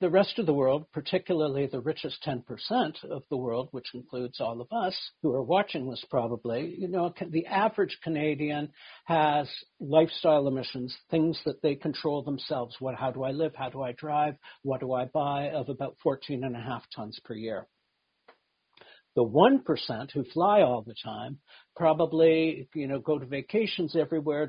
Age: 60-79